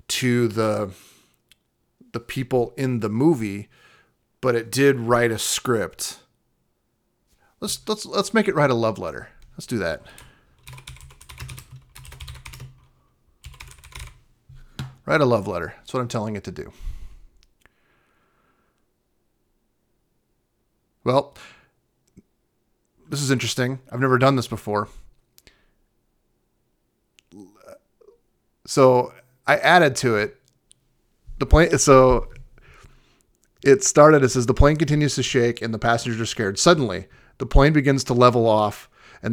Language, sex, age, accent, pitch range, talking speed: English, male, 40-59, American, 110-135 Hz, 115 wpm